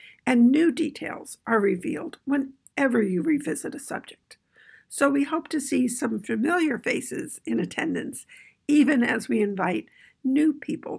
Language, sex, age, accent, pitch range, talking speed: English, female, 60-79, American, 225-285 Hz, 140 wpm